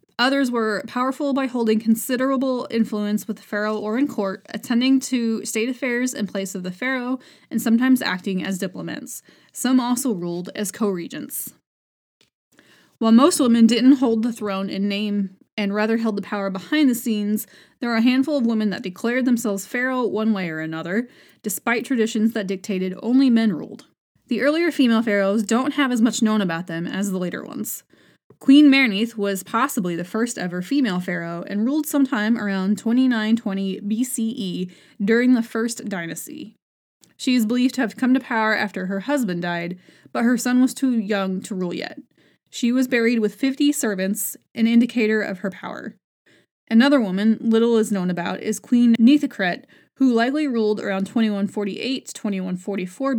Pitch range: 200-250 Hz